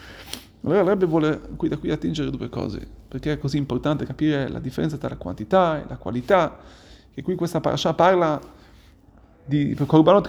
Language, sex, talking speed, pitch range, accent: Italian, male, 170 wpm, 145-200 Hz, native